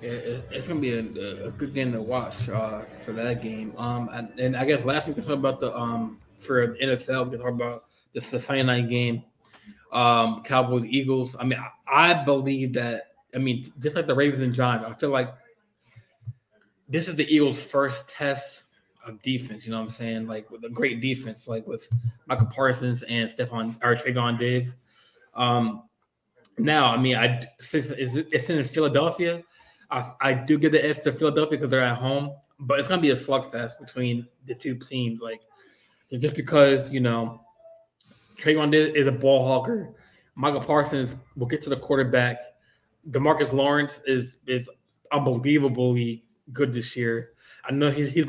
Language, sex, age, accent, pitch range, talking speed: English, male, 20-39, American, 120-140 Hz, 175 wpm